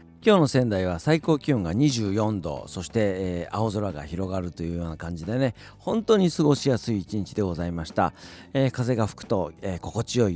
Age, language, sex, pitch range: 40-59, Japanese, male, 100-145 Hz